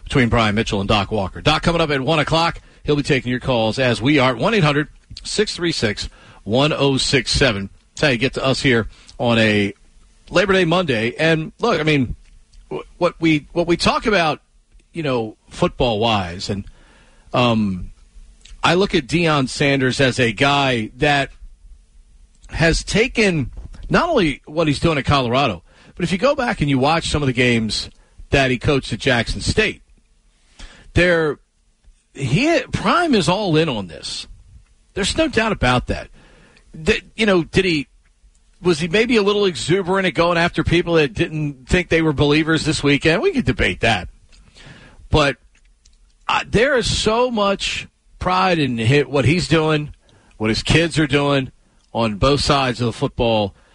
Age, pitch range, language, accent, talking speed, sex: 40-59, 115-170 Hz, English, American, 170 wpm, male